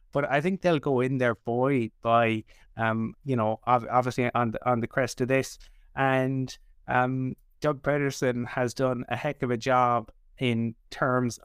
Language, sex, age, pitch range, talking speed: English, male, 20-39, 125-160 Hz, 175 wpm